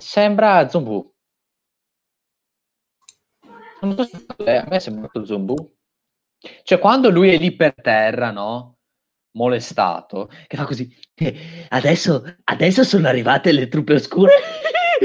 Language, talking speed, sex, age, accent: Italian, 105 wpm, male, 30-49, native